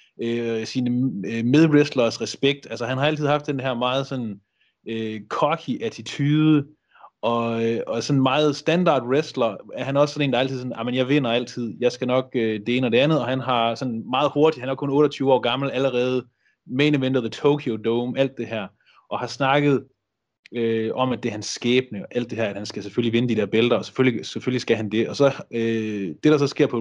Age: 30-49